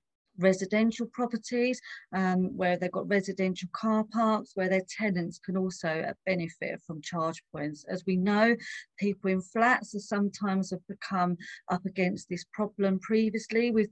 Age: 40-59